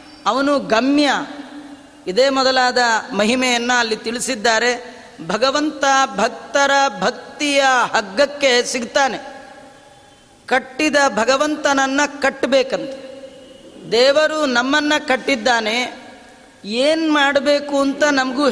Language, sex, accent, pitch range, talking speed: Kannada, female, native, 255-285 Hz, 70 wpm